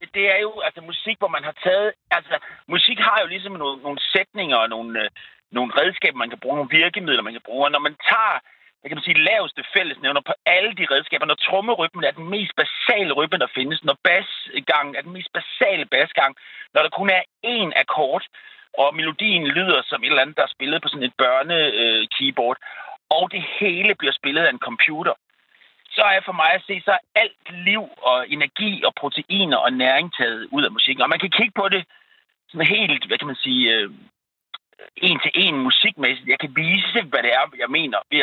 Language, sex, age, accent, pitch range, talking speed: Danish, male, 40-59, native, 155-220 Hz, 200 wpm